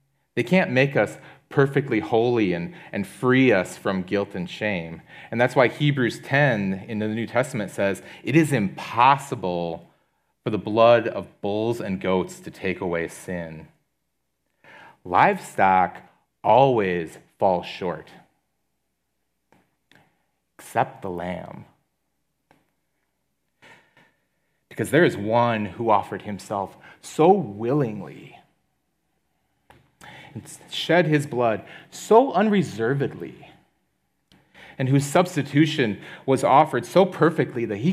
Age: 30-49